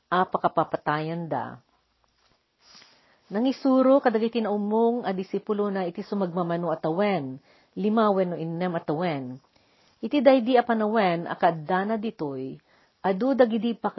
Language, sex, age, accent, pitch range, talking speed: Filipino, female, 50-69, native, 165-215 Hz, 100 wpm